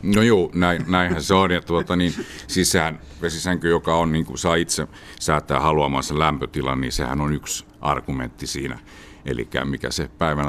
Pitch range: 70-85 Hz